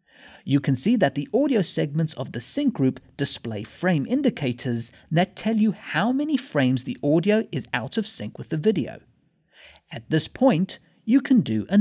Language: English